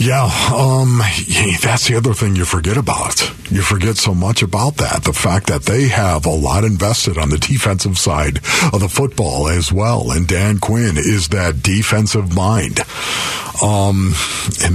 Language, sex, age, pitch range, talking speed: English, male, 50-69, 100-130 Hz, 165 wpm